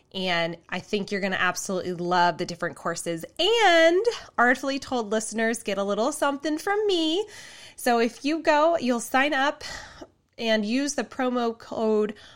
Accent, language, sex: American, English, female